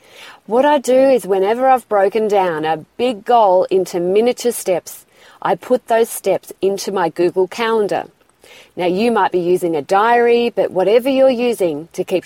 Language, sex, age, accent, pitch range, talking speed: English, female, 40-59, Australian, 185-240 Hz, 170 wpm